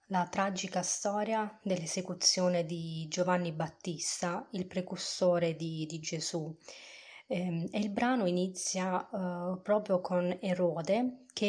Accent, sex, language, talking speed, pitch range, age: native, female, Italian, 105 wpm, 175-195 Hz, 20-39